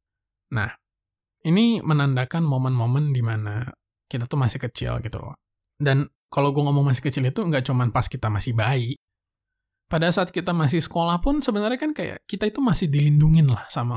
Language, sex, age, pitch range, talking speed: English, male, 20-39, 115-170 Hz, 170 wpm